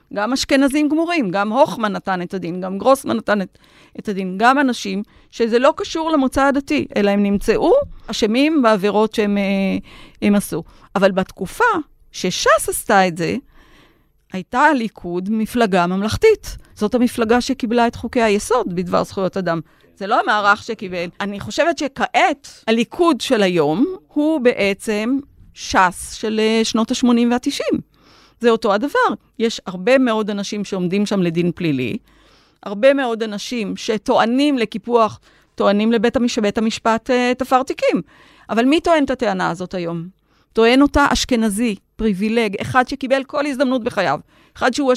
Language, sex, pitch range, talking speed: Hebrew, female, 200-265 Hz, 135 wpm